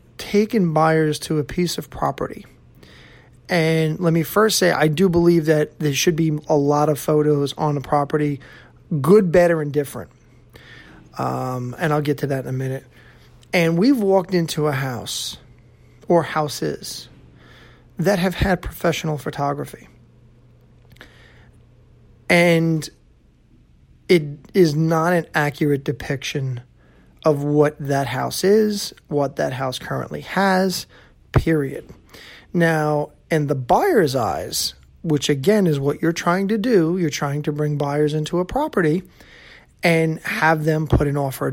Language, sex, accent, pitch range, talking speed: English, male, American, 140-170 Hz, 140 wpm